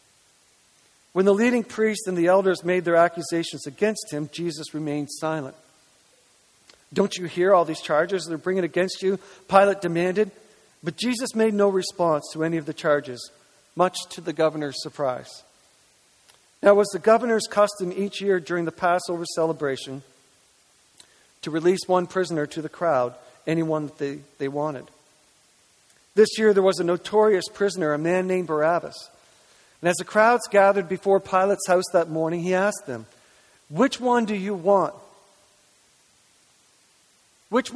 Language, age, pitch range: English, 50-69, 155-195 Hz